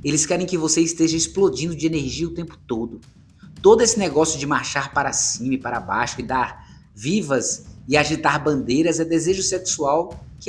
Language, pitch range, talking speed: Portuguese, 120-170 Hz, 175 wpm